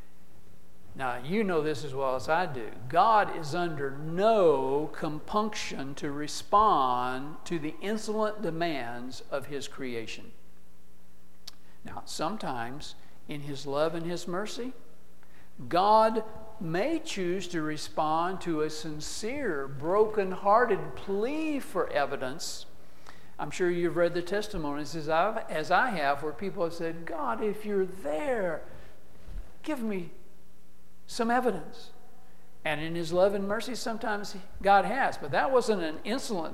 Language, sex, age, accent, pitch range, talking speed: English, male, 60-79, American, 145-210 Hz, 130 wpm